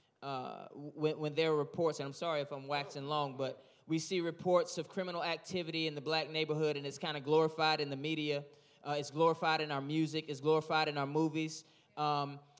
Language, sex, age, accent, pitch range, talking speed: English, male, 20-39, American, 150-185 Hz, 210 wpm